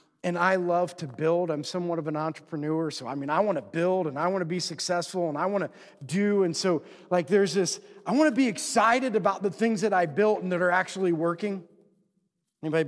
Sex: male